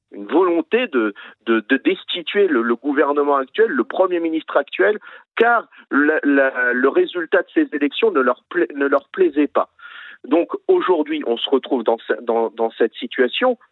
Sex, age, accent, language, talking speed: male, 50-69, French, French, 150 wpm